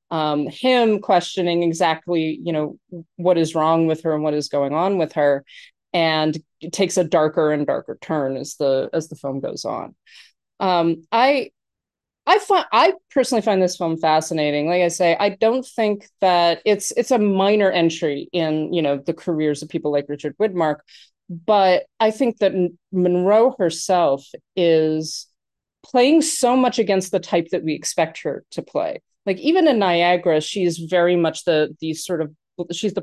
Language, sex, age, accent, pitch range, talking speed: English, female, 30-49, American, 160-205 Hz, 180 wpm